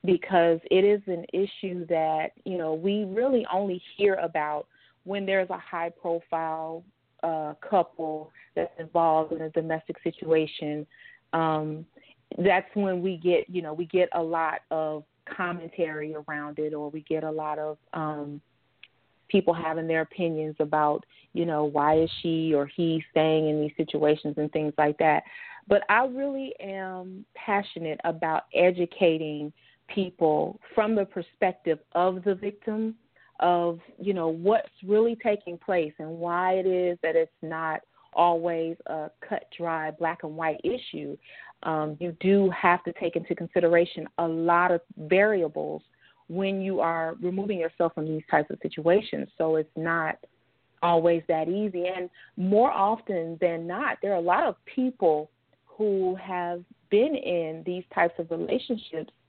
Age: 30-49